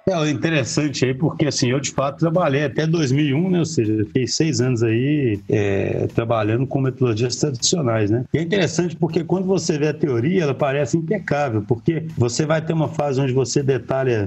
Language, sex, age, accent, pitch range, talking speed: Portuguese, male, 60-79, Brazilian, 120-155 Hz, 195 wpm